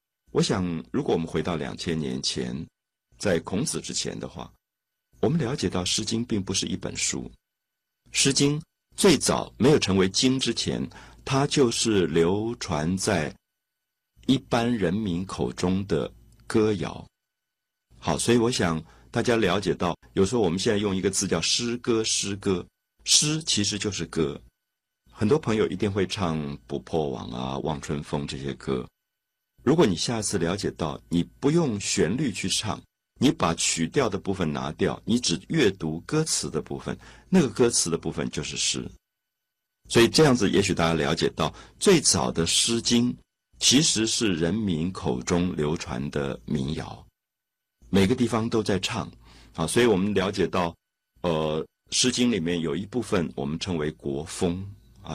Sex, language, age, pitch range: male, Chinese, 50-69, 80-115 Hz